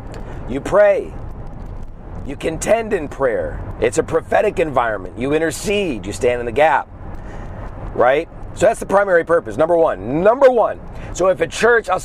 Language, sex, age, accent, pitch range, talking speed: English, male, 40-59, American, 105-175 Hz, 160 wpm